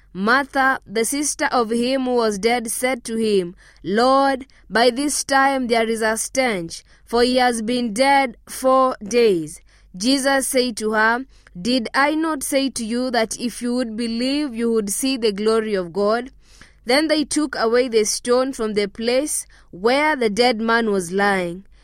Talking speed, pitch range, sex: 175 wpm, 215-265 Hz, female